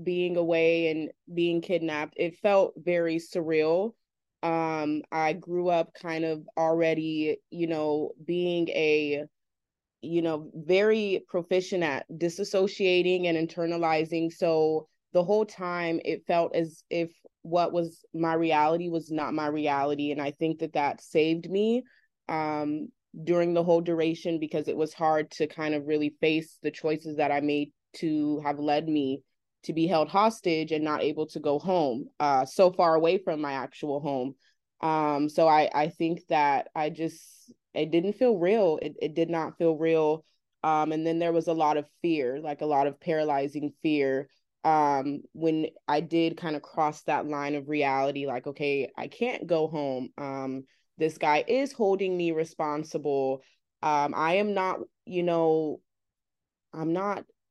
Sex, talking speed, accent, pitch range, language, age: female, 165 wpm, American, 150-170 Hz, English, 20-39